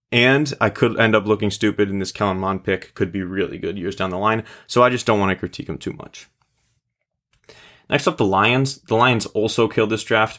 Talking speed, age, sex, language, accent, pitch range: 230 wpm, 20-39, male, English, American, 95-110 Hz